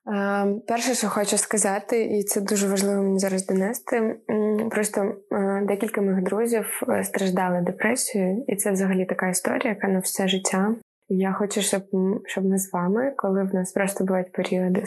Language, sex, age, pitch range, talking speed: Ukrainian, female, 20-39, 195-220 Hz, 160 wpm